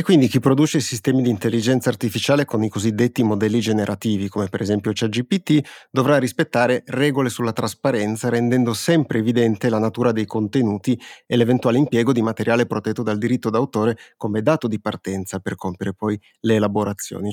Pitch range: 110-130 Hz